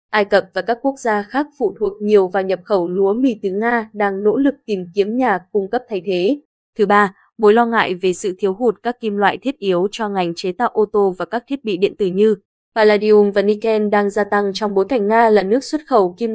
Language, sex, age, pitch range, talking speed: Vietnamese, female, 20-39, 195-230 Hz, 255 wpm